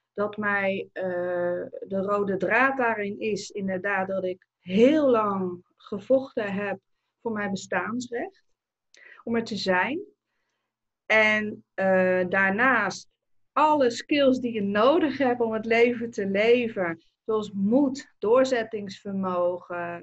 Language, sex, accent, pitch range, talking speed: Dutch, female, Dutch, 190-240 Hz, 115 wpm